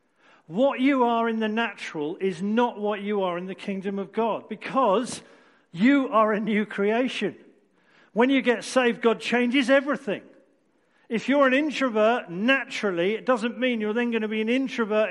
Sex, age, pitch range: male, 50-69, 175-240 Hz